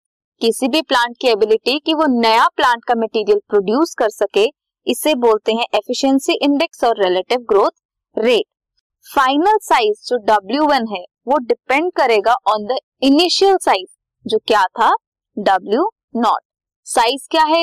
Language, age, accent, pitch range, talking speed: Hindi, 20-39, native, 220-320 Hz, 150 wpm